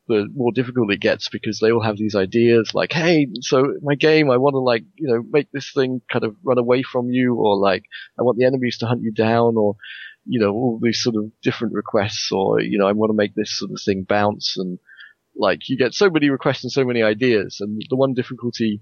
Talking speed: 245 wpm